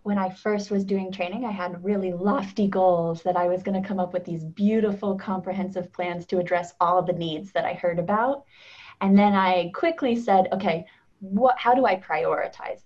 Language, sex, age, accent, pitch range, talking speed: English, female, 20-39, American, 175-205 Hz, 200 wpm